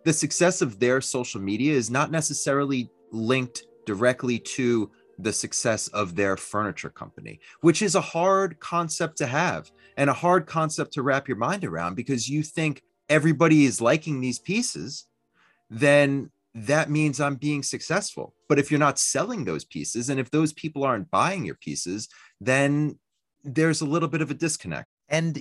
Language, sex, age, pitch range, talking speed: English, male, 30-49, 115-155 Hz, 170 wpm